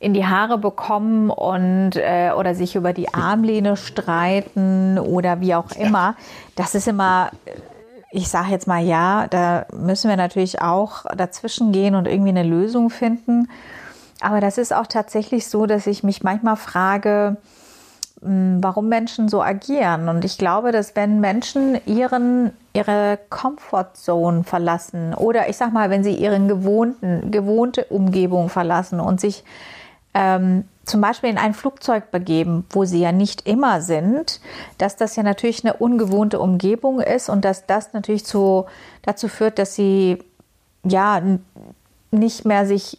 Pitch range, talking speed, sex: 185-215 Hz, 150 wpm, female